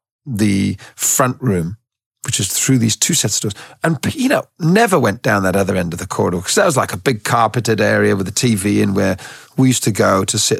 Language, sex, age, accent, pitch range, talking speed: English, male, 40-59, British, 100-135 Hz, 230 wpm